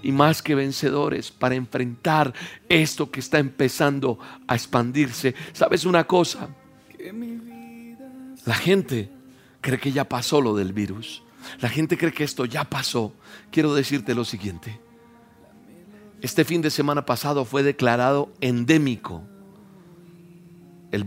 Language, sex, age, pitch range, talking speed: Spanish, male, 50-69, 115-175 Hz, 125 wpm